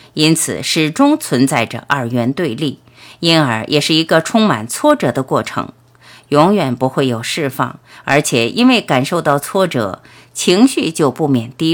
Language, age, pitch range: Chinese, 50-69, 125-185 Hz